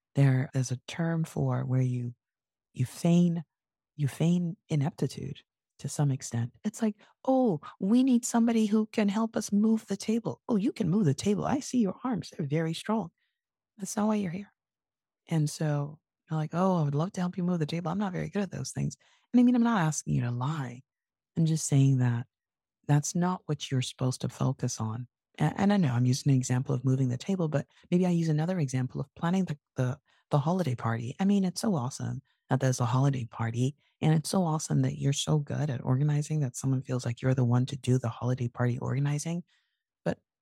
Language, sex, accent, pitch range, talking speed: English, female, American, 130-185 Hz, 215 wpm